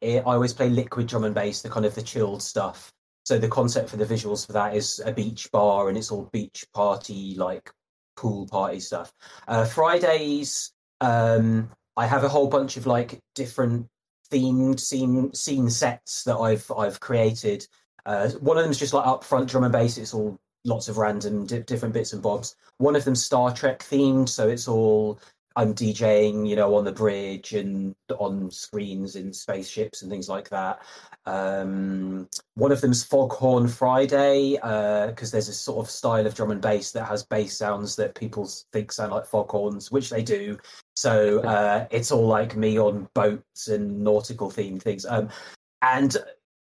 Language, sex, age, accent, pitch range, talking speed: English, male, 20-39, British, 105-130 Hz, 185 wpm